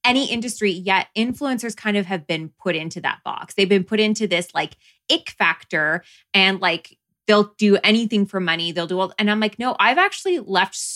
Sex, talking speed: female, 205 wpm